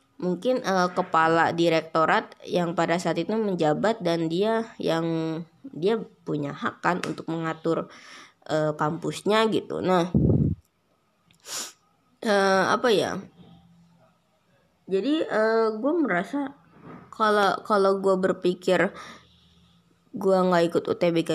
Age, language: 20-39, Indonesian